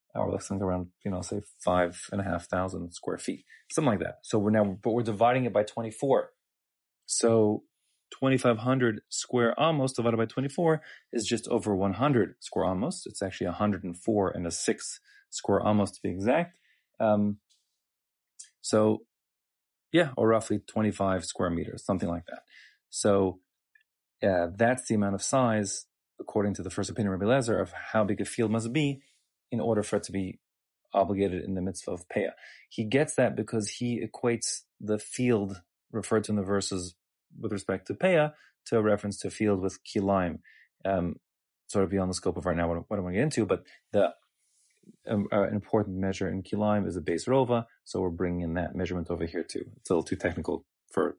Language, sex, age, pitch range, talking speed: English, male, 30-49, 95-115 Hz, 190 wpm